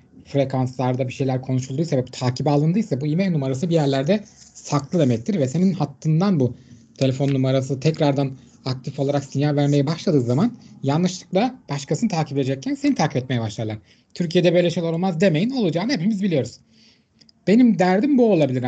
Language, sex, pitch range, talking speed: Turkish, male, 135-185 Hz, 150 wpm